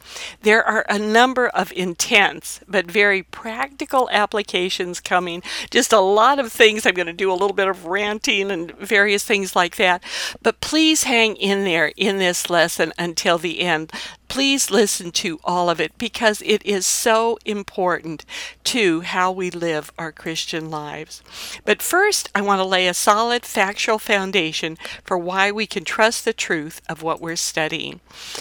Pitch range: 175-215 Hz